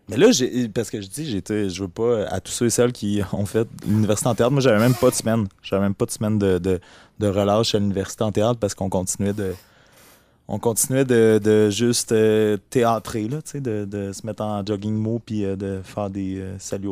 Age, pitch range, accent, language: 20-39, 100-125 Hz, Canadian, French